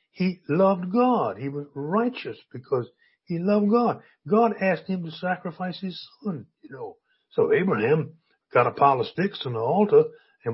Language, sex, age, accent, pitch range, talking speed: English, male, 60-79, American, 155-235 Hz, 170 wpm